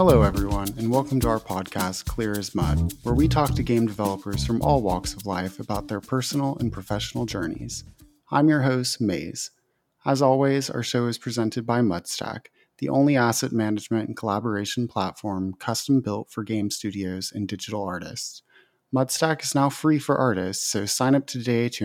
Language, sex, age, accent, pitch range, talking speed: English, male, 30-49, American, 100-125 Hz, 180 wpm